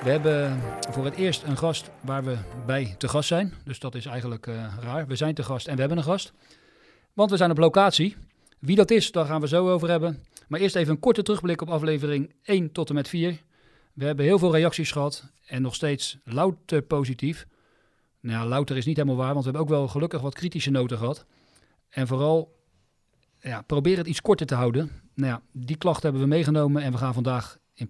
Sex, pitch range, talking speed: male, 130-160 Hz, 225 wpm